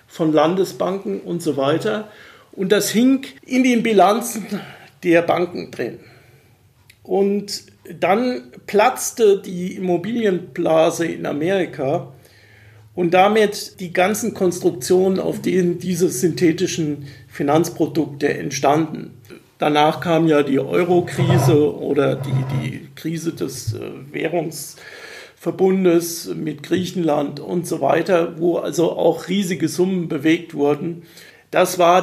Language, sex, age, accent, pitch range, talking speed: German, male, 50-69, German, 155-195 Hz, 110 wpm